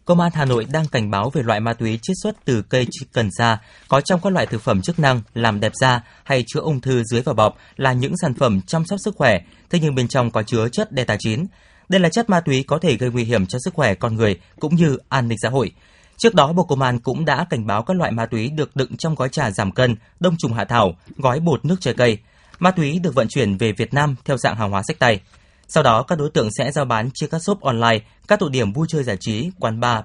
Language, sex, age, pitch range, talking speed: Vietnamese, male, 20-39, 115-155 Hz, 275 wpm